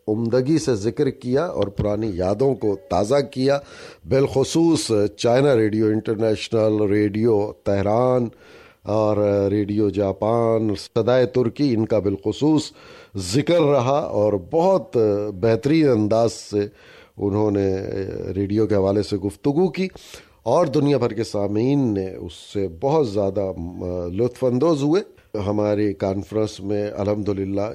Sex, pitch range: male, 95-125 Hz